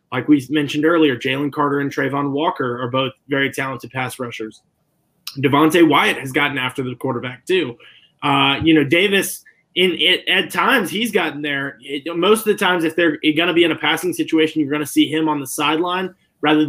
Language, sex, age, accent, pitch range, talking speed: English, male, 20-39, American, 140-165 Hz, 205 wpm